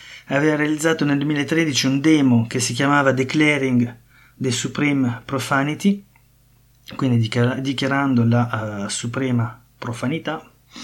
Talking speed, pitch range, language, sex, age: 105 wpm, 125-150 Hz, Italian, male, 30-49